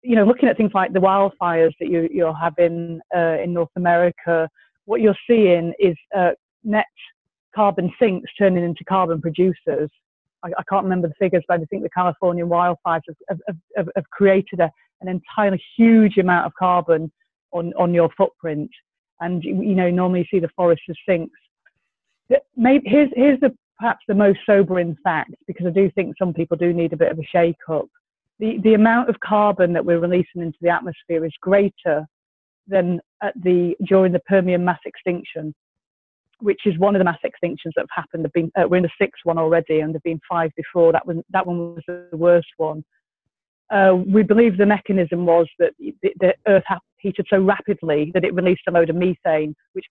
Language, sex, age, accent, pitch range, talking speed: English, female, 30-49, British, 165-195 Hz, 190 wpm